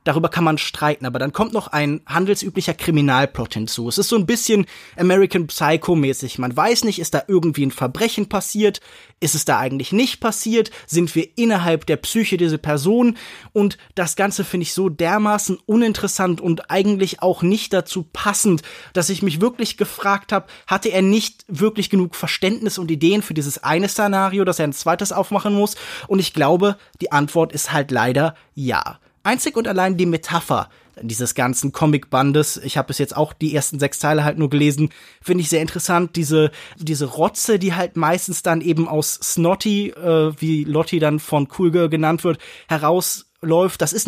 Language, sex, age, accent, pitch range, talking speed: German, male, 20-39, German, 150-195 Hz, 180 wpm